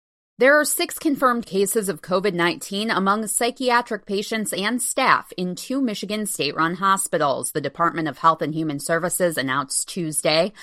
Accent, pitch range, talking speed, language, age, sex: American, 160-215 Hz, 145 wpm, English, 20-39, female